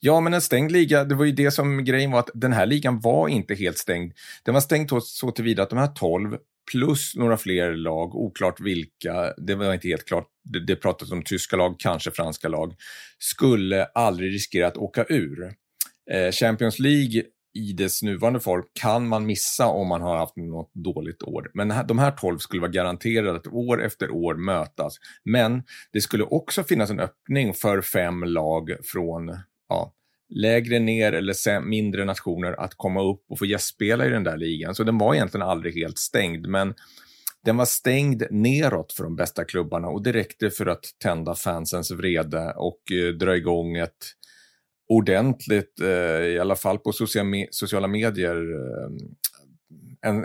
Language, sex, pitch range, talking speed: Swedish, male, 90-120 Hz, 170 wpm